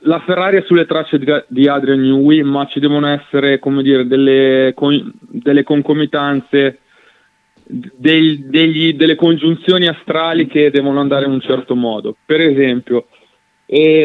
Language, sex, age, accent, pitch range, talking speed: Italian, male, 20-39, native, 130-155 Hz, 145 wpm